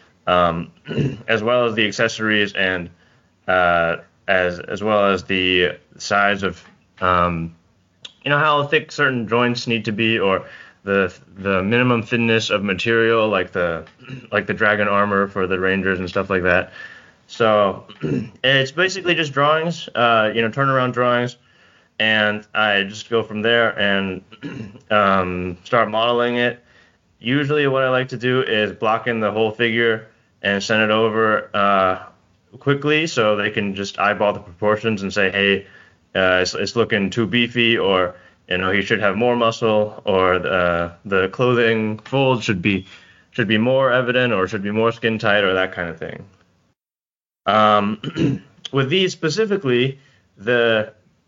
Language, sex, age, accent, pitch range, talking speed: English, male, 20-39, American, 100-120 Hz, 160 wpm